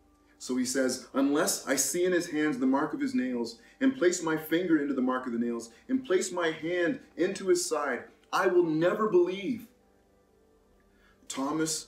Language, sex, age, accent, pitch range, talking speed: English, male, 30-49, American, 110-170 Hz, 180 wpm